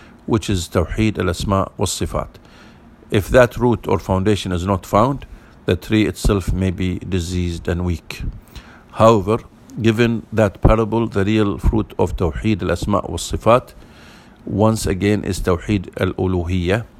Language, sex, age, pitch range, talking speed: English, male, 50-69, 95-110 Hz, 135 wpm